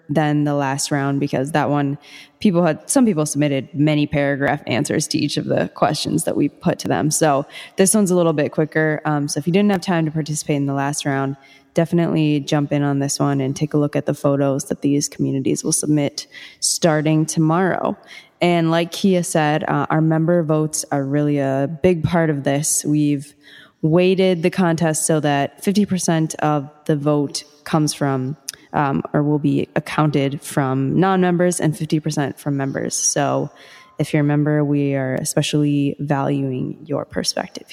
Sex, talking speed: female, 185 wpm